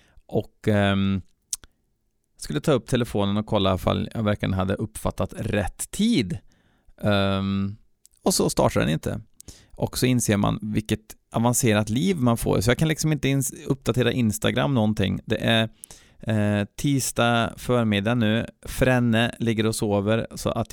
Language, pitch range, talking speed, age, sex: Swedish, 105-125 Hz, 150 wpm, 20-39, male